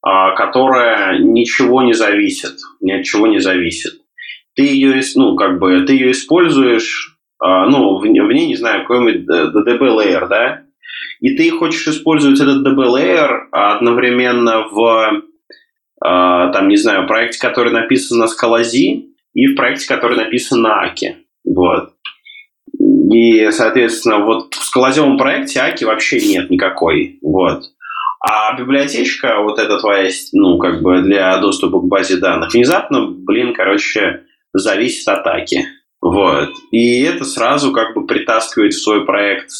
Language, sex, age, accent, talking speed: Russian, male, 20-39, native, 135 wpm